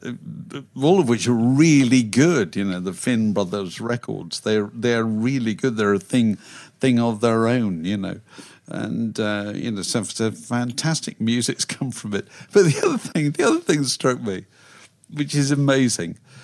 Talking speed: 165 wpm